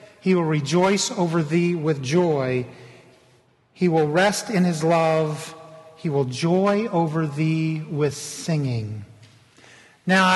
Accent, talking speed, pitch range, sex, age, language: American, 120 wpm, 160-205 Hz, male, 50-69, English